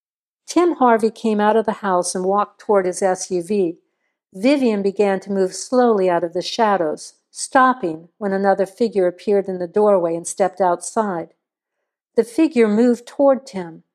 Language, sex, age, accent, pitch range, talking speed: English, female, 60-79, American, 190-240 Hz, 160 wpm